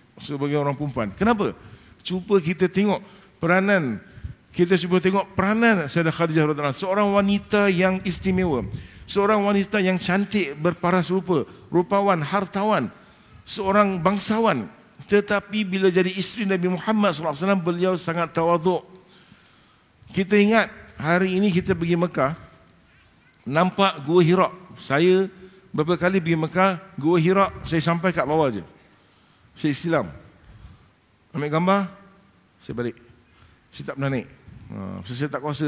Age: 50-69